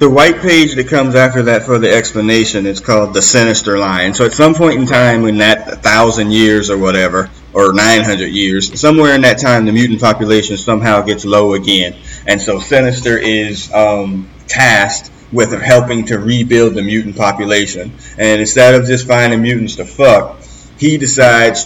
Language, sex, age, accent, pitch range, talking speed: English, male, 30-49, American, 105-125 Hz, 175 wpm